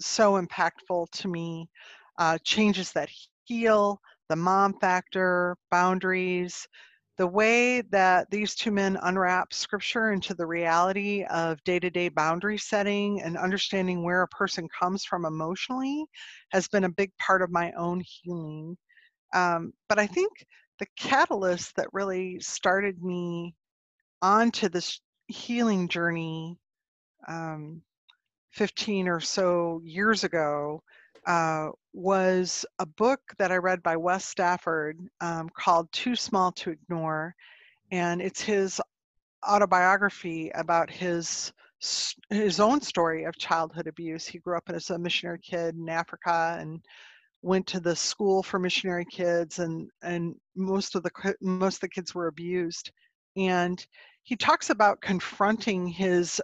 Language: English